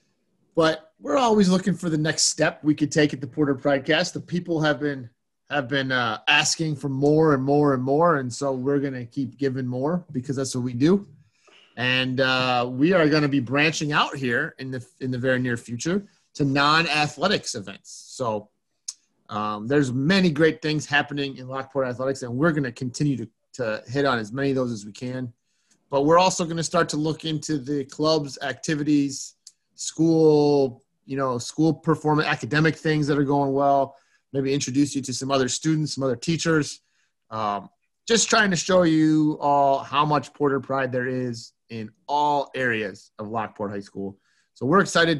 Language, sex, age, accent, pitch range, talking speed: English, male, 30-49, American, 130-155 Hz, 190 wpm